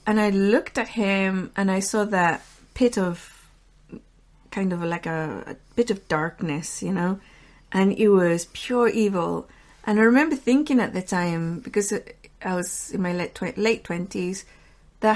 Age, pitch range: 30-49, 180-225 Hz